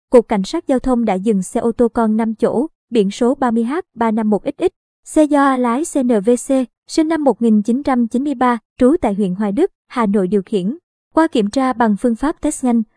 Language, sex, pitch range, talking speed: Vietnamese, male, 220-270 Hz, 190 wpm